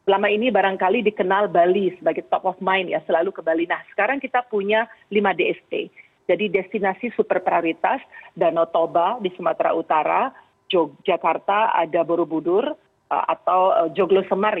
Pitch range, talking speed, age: 170-205 Hz, 140 wpm, 40-59